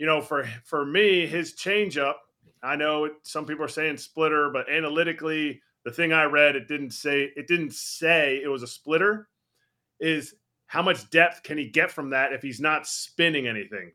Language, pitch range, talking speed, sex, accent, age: English, 150-205 Hz, 195 wpm, male, American, 30-49